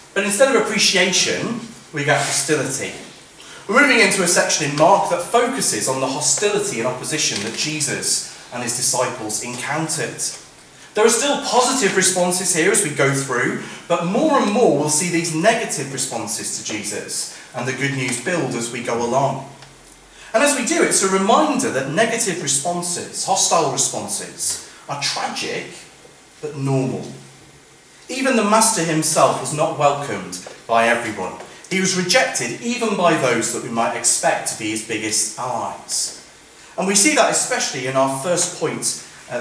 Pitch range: 130-185 Hz